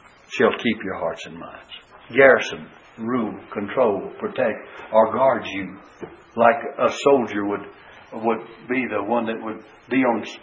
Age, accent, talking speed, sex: 60-79, American, 145 wpm, male